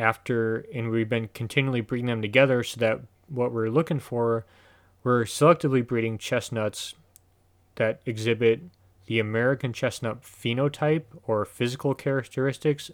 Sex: male